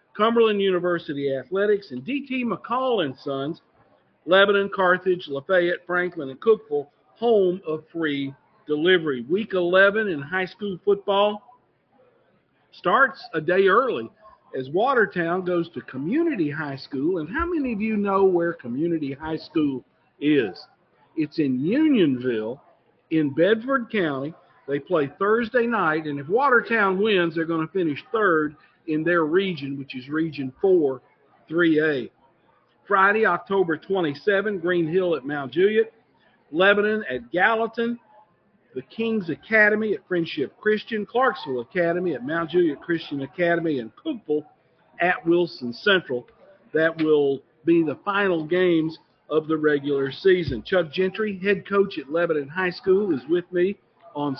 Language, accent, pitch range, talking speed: English, American, 155-210 Hz, 135 wpm